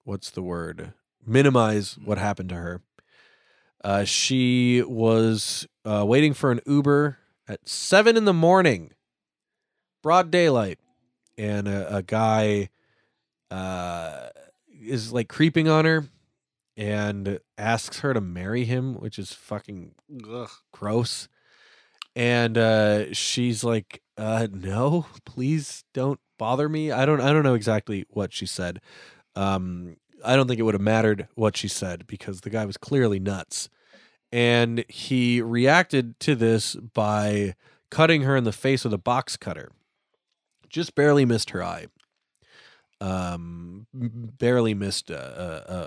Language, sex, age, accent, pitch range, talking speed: English, male, 20-39, American, 100-135 Hz, 135 wpm